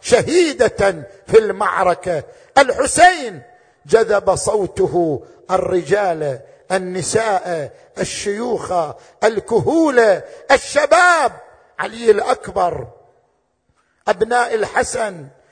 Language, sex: Arabic, male